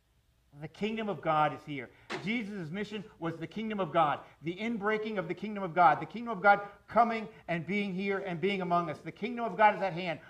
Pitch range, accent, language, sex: 125-205 Hz, American, English, male